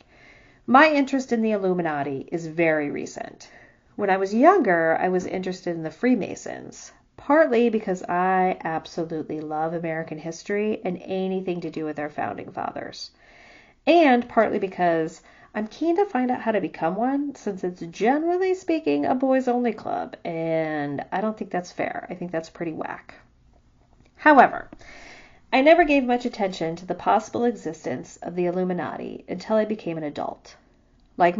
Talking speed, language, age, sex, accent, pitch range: 160 wpm, English, 40-59, female, American, 160-235 Hz